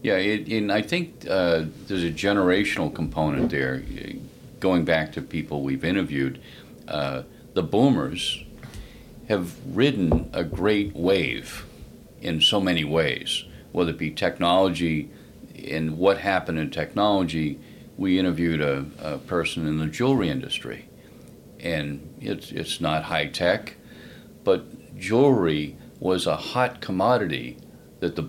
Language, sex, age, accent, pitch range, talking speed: English, male, 50-69, American, 80-100 Hz, 125 wpm